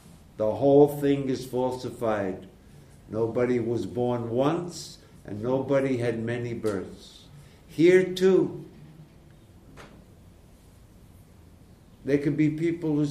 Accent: American